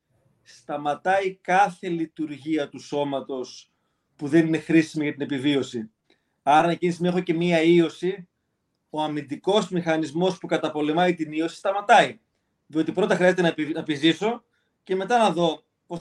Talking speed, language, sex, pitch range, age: 145 wpm, Greek, male, 155-185 Hz, 30-49